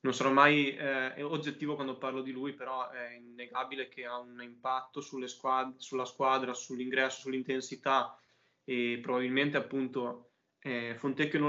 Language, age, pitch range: Italian, 20-39, 125-140 Hz